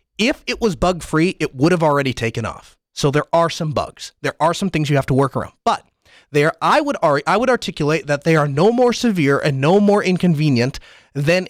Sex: male